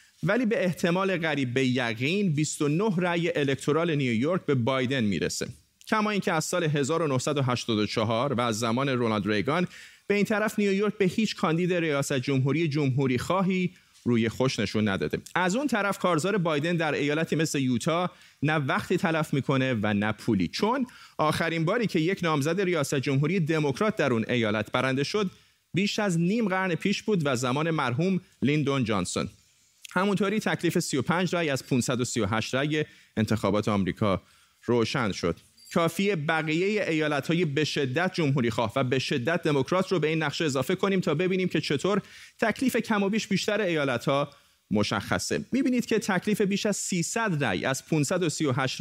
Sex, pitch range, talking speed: male, 130-185 Hz, 155 wpm